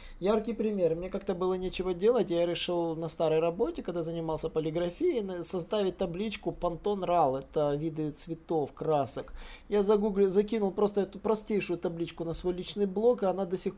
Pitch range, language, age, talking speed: 155-195 Hz, Russian, 20-39, 170 wpm